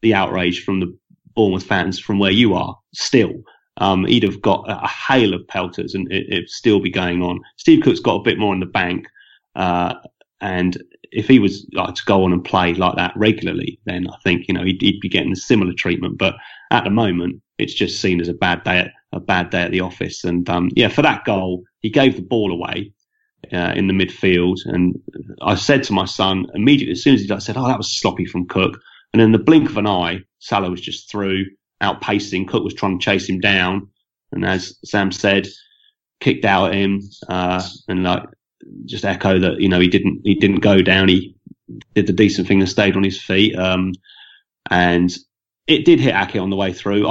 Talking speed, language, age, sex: 215 wpm, English, 30-49, male